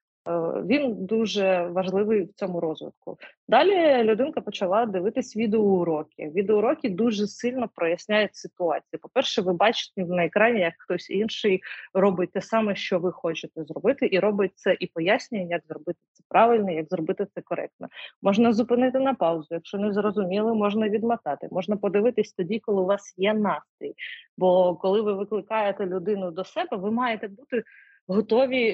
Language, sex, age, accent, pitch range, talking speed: Ukrainian, female, 30-49, native, 185-230 Hz, 150 wpm